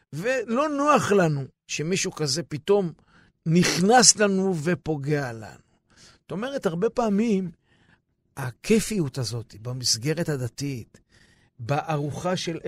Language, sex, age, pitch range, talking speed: Hebrew, male, 60-79, 140-205 Hz, 95 wpm